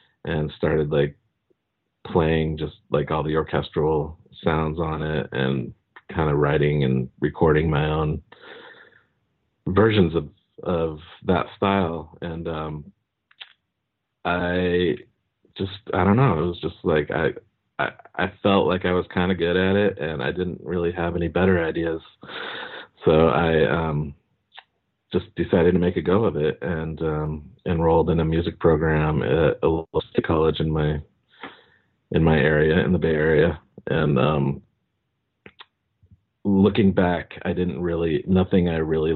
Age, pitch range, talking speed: 40-59, 75-90 Hz, 145 wpm